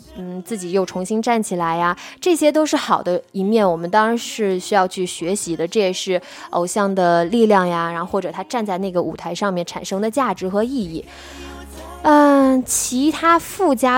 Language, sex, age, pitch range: Chinese, female, 20-39, 185-250 Hz